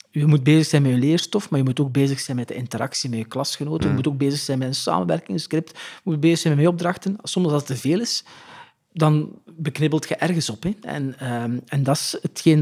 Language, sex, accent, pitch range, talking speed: Dutch, male, Dutch, 135-170 Hz, 245 wpm